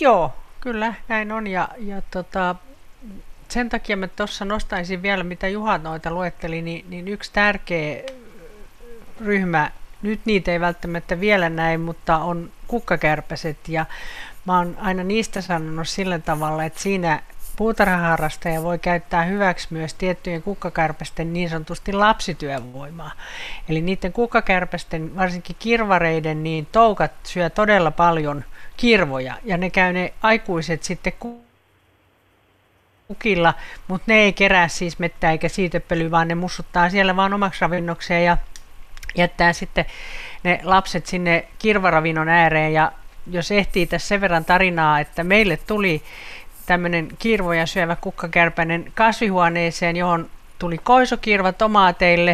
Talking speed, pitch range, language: 125 wpm, 165-200 Hz, Finnish